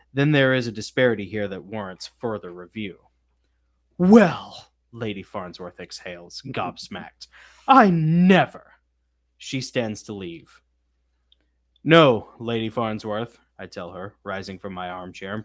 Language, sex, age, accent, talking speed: English, male, 20-39, American, 125 wpm